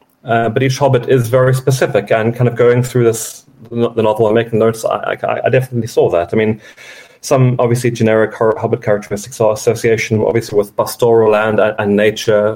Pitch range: 100-125 Hz